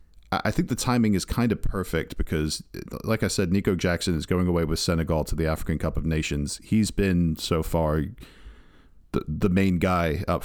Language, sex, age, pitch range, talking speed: English, male, 40-59, 80-100 Hz, 195 wpm